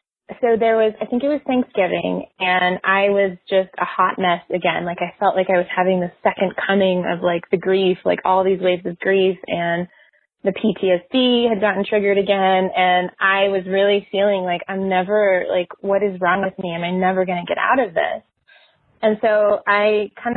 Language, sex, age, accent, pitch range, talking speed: English, female, 20-39, American, 185-215 Hz, 205 wpm